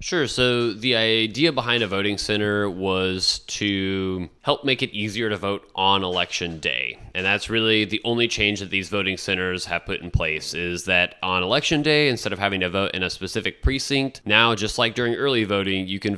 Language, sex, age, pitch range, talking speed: English, male, 20-39, 95-115 Hz, 205 wpm